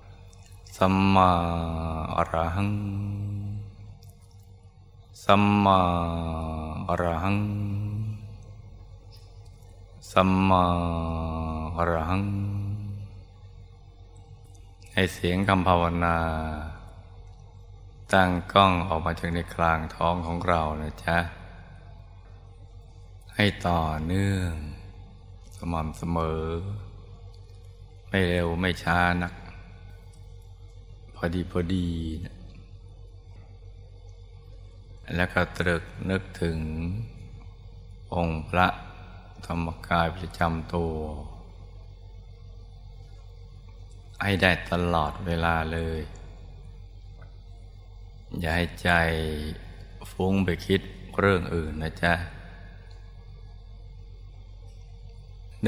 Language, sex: Thai, male